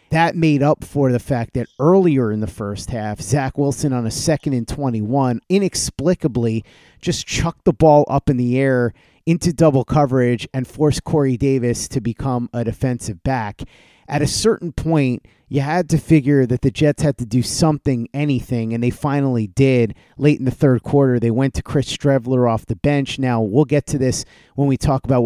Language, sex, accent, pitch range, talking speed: English, male, American, 120-145 Hz, 190 wpm